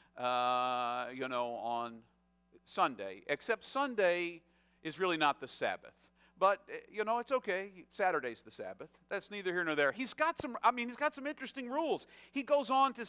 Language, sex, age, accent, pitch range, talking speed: English, male, 50-69, American, 150-245 Hz, 185 wpm